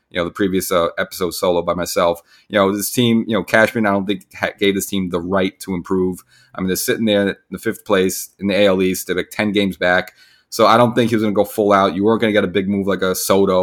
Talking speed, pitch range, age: 290 wpm, 90-105 Hz, 30-49